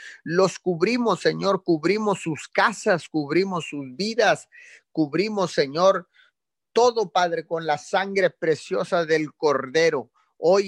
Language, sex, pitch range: Spanish, male, 150-195 Hz